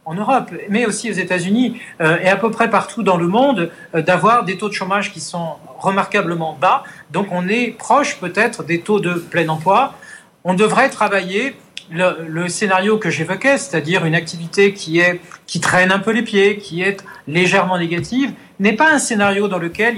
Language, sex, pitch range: French, male, 175-220 Hz